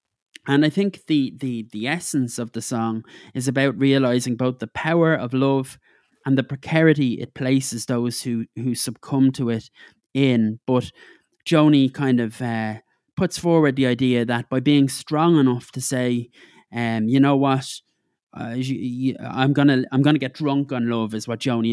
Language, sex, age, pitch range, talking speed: English, male, 20-39, 120-135 Hz, 180 wpm